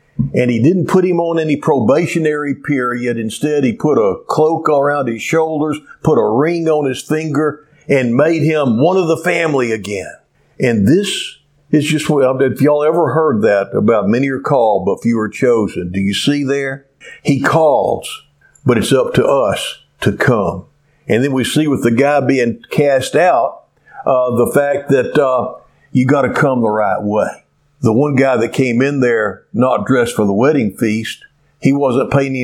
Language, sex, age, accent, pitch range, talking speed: English, male, 50-69, American, 125-170 Hz, 185 wpm